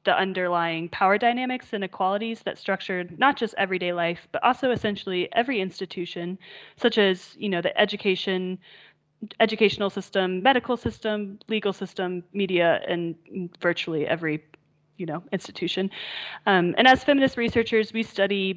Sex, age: female, 30-49